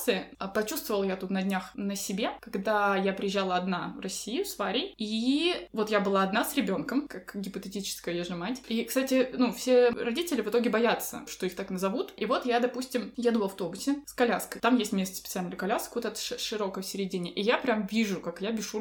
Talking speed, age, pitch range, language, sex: 205 wpm, 20-39, 190-240 Hz, Russian, female